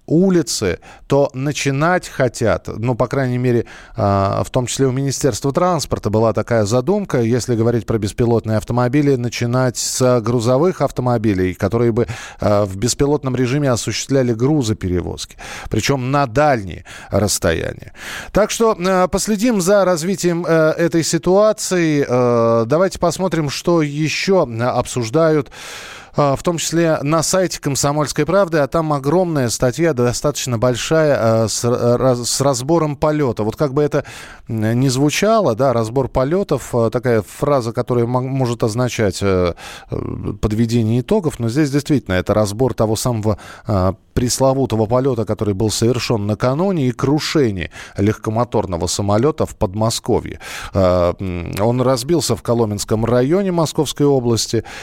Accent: native